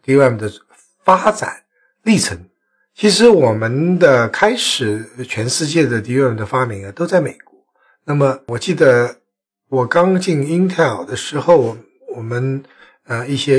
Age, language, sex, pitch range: 60-79, Chinese, male, 105-155 Hz